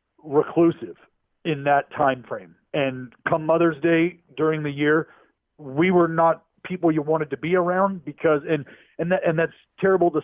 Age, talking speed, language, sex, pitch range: 40-59, 165 wpm, English, male, 135-160 Hz